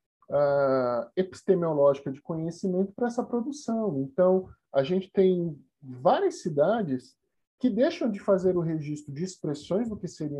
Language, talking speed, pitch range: Portuguese, 135 wpm, 140-185 Hz